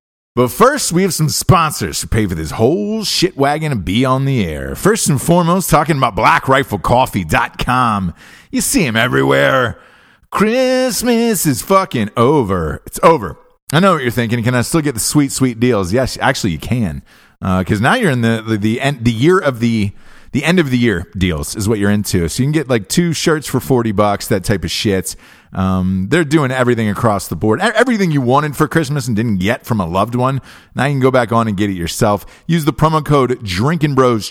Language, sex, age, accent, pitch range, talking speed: English, male, 30-49, American, 100-150 Hz, 210 wpm